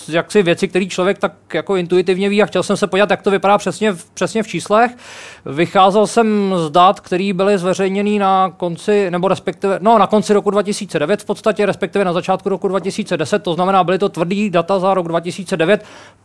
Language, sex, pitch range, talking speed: Czech, male, 165-200 Hz, 195 wpm